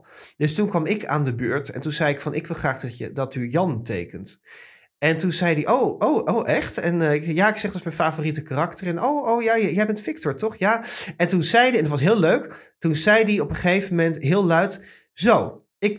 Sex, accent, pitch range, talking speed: male, Dutch, 145-185 Hz, 255 wpm